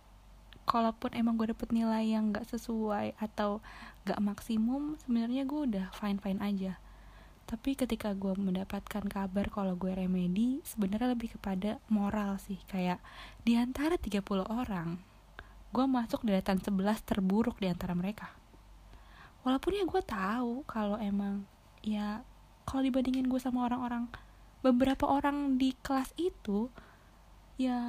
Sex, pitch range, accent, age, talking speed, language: female, 195-255 Hz, native, 20-39, 125 wpm, Indonesian